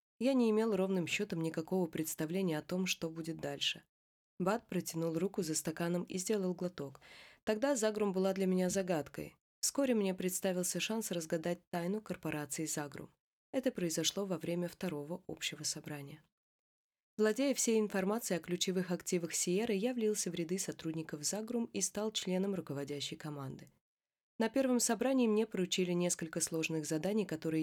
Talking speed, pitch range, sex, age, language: 150 wpm, 160-205 Hz, female, 20-39, Russian